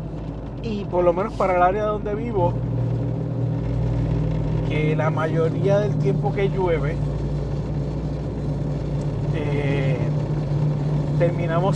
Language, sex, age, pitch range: Spanish, male, 30-49, 135-155 Hz